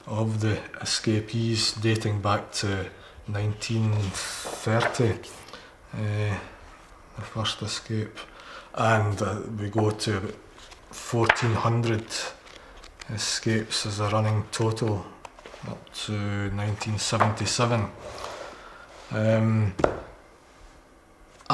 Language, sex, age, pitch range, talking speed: English, male, 20-39, 100-110 Hz, 70 wpm